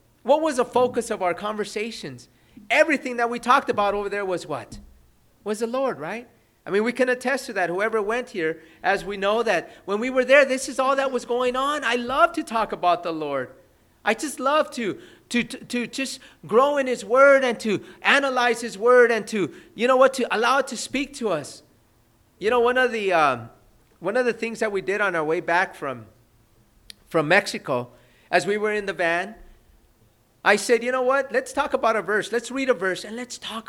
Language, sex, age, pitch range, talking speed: English, male, 40-59, 200-265 Hz, 220 wpm